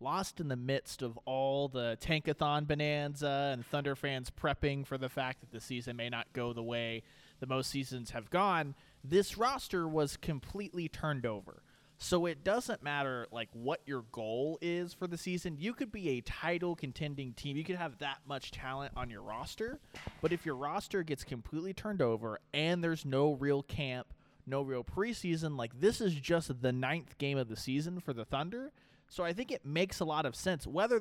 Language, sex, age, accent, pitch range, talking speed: English, male, 30-49, American, 125-160 Hz, 195 wpm